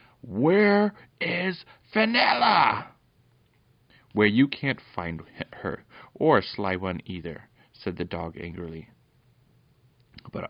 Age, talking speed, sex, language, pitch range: 30-49, 95 wpm, male, English, 90-130 Hz